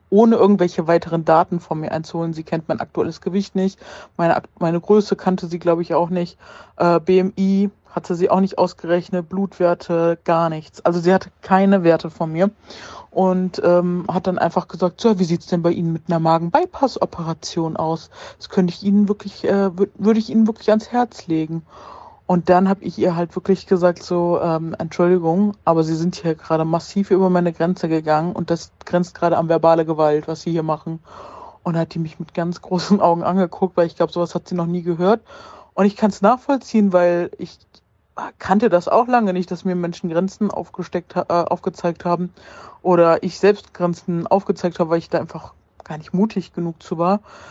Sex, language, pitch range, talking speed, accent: female, German, 170-190 Hz, 195 wpm, German